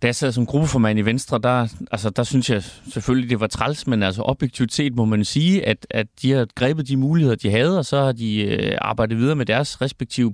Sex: male